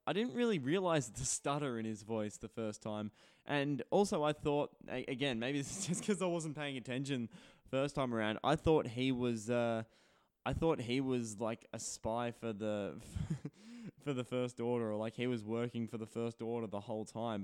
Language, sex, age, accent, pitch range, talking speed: English, male, 20-39, Australian, 110-135 Hz, 200 wpm